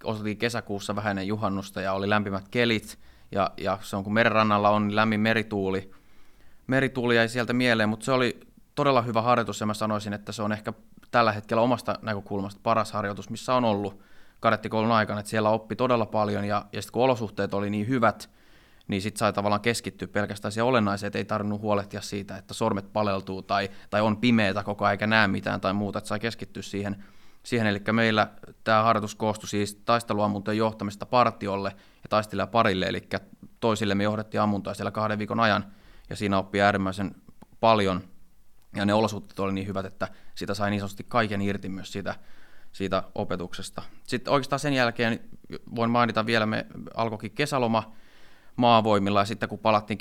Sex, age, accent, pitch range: male, 20-39, native, 100-115 Hz